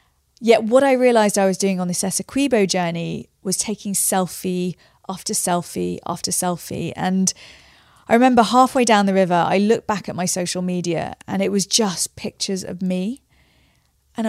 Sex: female